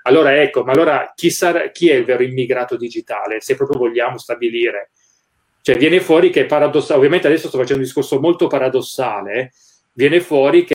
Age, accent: 30-49, native